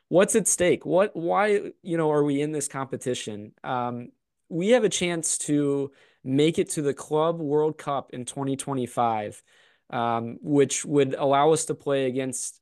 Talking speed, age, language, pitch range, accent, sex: 165 wpm, 20-39, English, 125-150 Hz, American, male